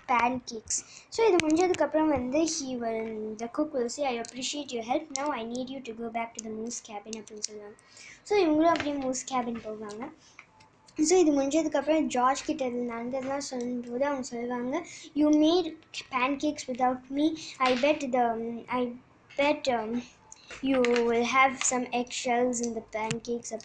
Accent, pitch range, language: native, 230-275 Hz, Tamil